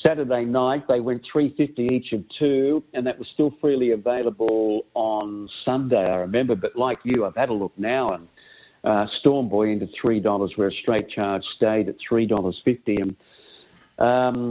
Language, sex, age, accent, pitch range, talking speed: English, male, 50-69, Australian, 110-135 Hz, 180 wpm